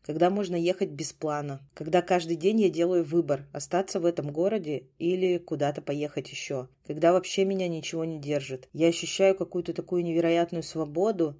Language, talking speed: Russian, 165 wpm